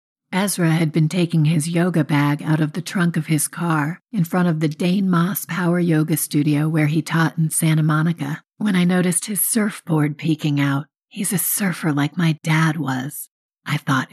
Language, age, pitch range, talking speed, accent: English, 50-69, 145-170 Hz, 190 wpm, American